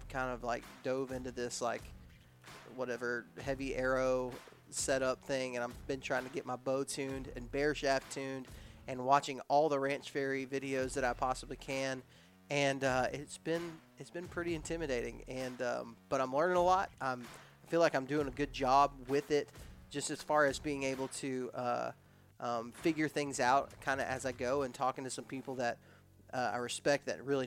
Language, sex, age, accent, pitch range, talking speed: English, male, 30-49, American, 130-155 Hz, 195 wpm